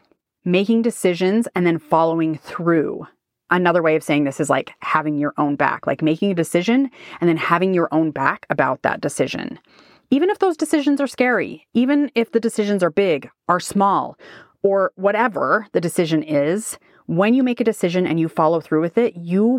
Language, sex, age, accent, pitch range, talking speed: English, female, 30-49, American, 165-225 Hz, 185 wpm